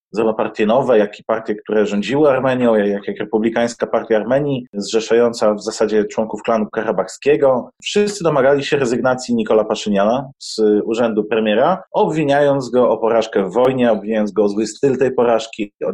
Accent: native